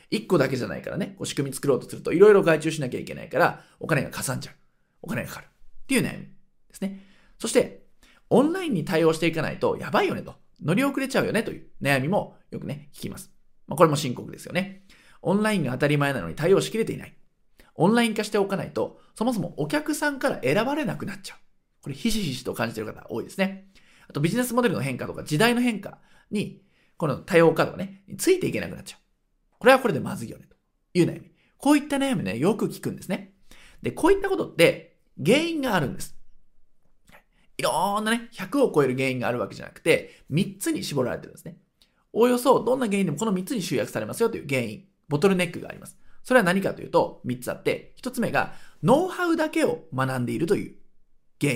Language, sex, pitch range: Japanese, male, 165-245 Hz